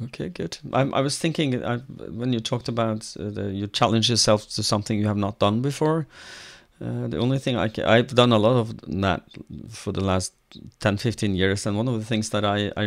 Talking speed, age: 230 wpm, 30-49